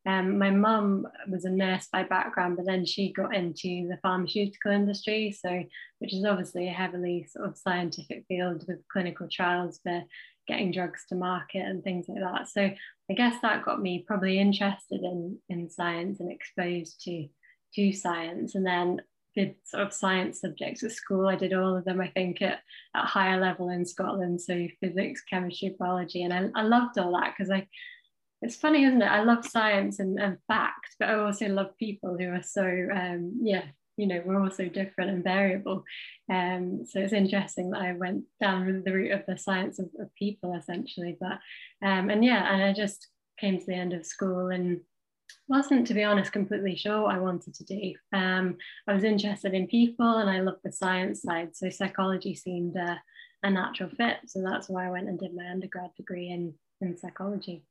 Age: 20-39